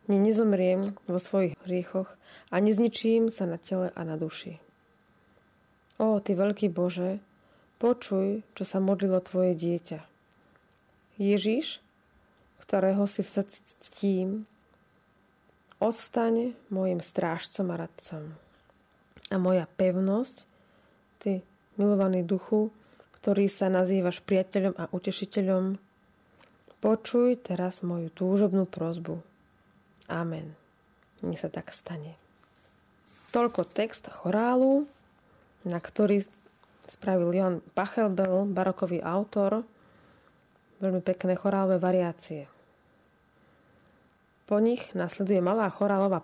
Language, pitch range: Slovak, 180-205 Hz